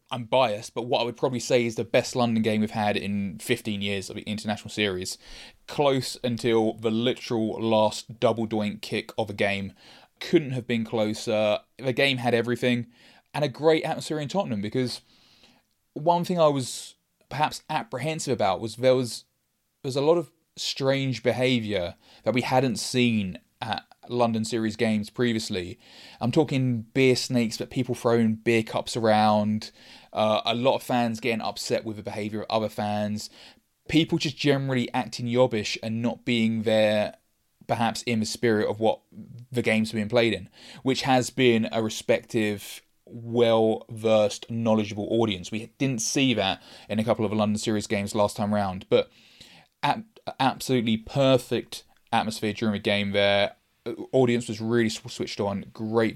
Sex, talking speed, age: male, 165 wpm, 20-39